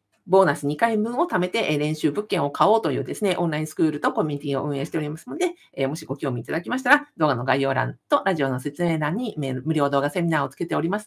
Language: Japanese